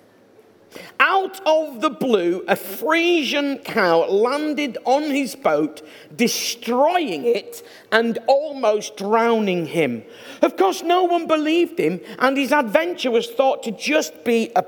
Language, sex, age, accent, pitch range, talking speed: English, male, 50-69, British, 200-315 Hz, 130 wpm